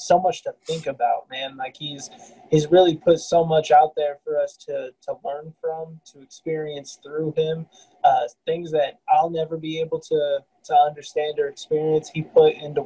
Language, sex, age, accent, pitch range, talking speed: English, male, 20-39, American, 145-185 Hz, 185 wpm